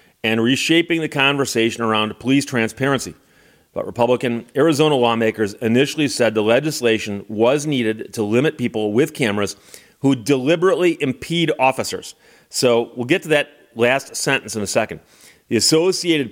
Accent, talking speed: American, 140 wpm